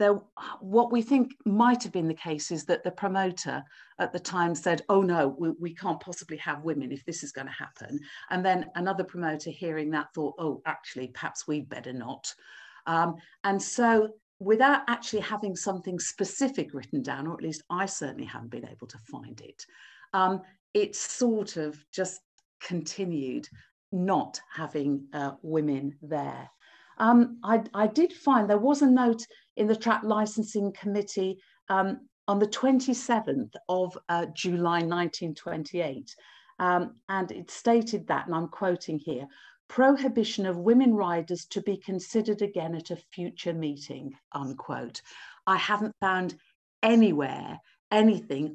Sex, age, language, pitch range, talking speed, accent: female, 50-69, English, 165-215 Hz, 155 wpm, British